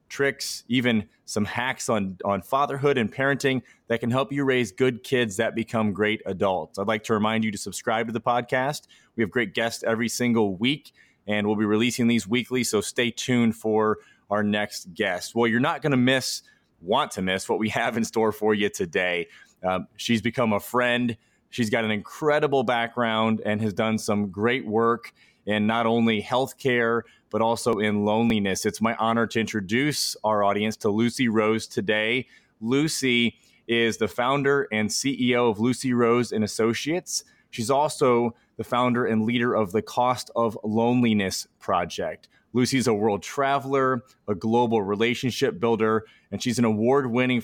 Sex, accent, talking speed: male, American, 175 wpm